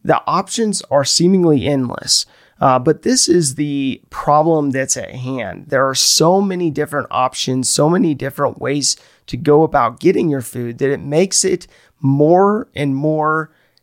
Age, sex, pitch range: 30-49, male, 130-160 Hz